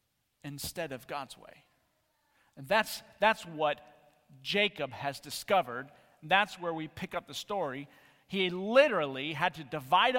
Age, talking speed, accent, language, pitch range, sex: 40-59, 135 wpm, American, English, 135-175 Hz, male